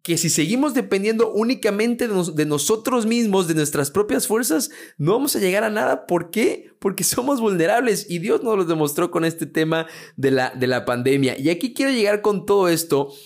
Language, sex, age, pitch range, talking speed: Spanish, male, 30-49, 140-205 Hz, 205 wpm